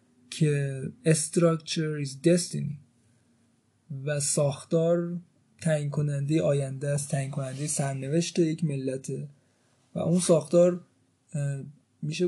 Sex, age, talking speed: male, 20-39, 90 wpm